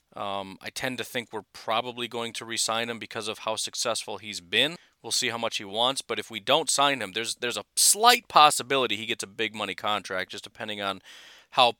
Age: 40-59